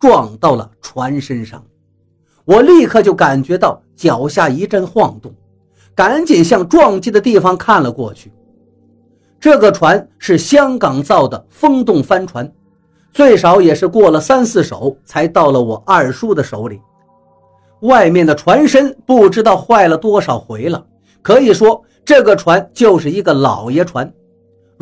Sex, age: male, 50-69